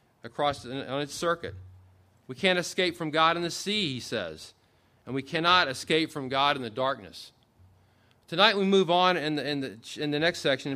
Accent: American